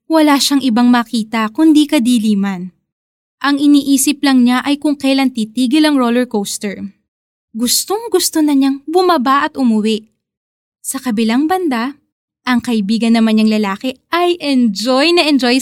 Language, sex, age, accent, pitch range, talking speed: Filipino, female, 20-39, native, 225-310 Hz, 135 wpm